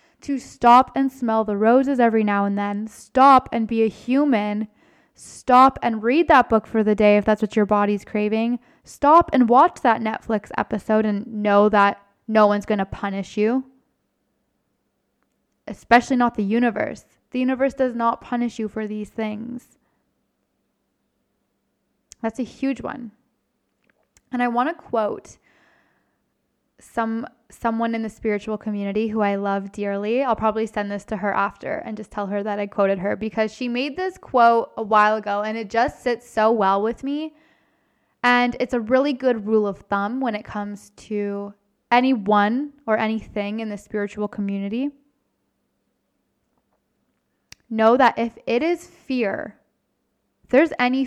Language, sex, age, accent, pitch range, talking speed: English, female, 10-29, American, 210-250 Hz, 155 wpm